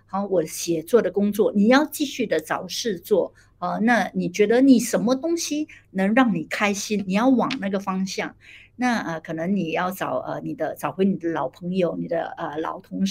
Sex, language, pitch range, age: female, Chinese, 180-260 Hz, 60-79